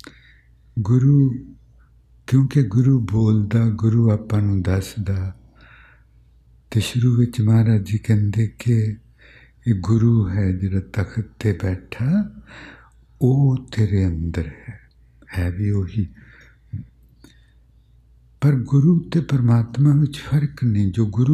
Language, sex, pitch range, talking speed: English, male, 85-115 Hz, 55 wpm